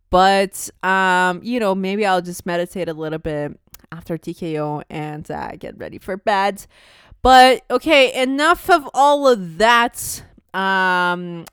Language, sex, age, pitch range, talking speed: English, female, 20-39, 175-225 Hz, 140 wpm